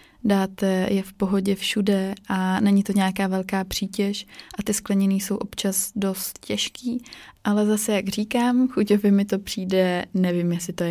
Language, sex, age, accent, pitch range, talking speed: Czech, female, 20-39, native, 175-200 Hz, 165 wpm